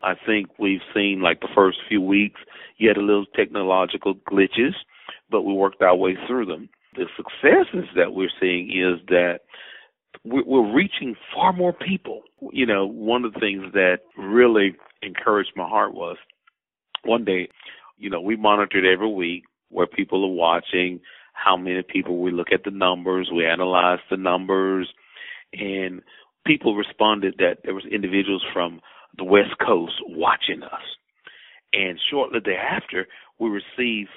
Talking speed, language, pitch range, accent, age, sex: 155 wpm, English, 90-110 Hz, American, 40-59, male